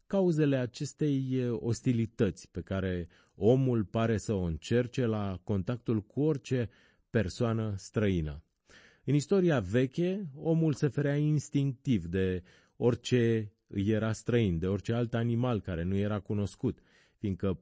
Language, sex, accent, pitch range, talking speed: Romanian, male, native, 95-130 Hz, 125 wpm